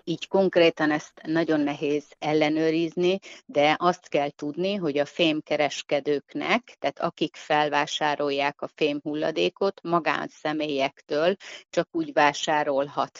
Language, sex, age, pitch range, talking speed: Hungarian, female, 30-49, 145-165 Hz, 100 wpm